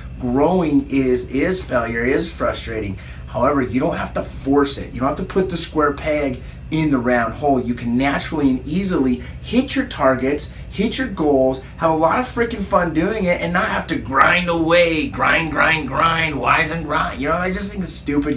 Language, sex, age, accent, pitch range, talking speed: English, male, 30-49, American, 130-185 Hz, 205 wpm